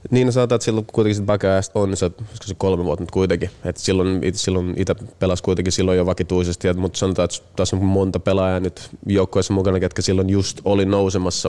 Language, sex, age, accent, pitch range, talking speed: Finnish, male, 20-39, native, 90-95 Hz, 205 wpm